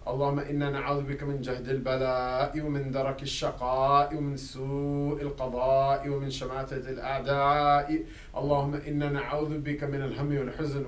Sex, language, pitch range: male, English, 120-135 Hz